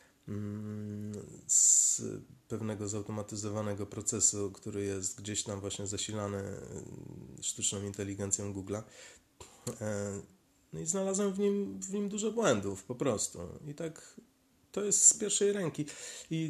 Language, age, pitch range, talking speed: Polish, 30-49, 110-160 Hz, 115 wpm